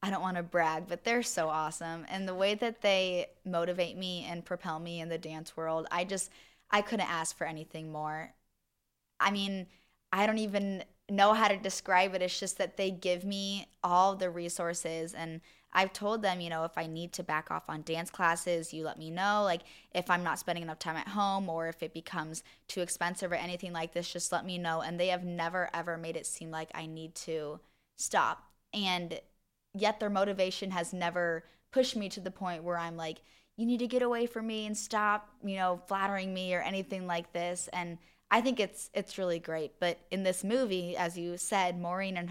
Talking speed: 215 wpm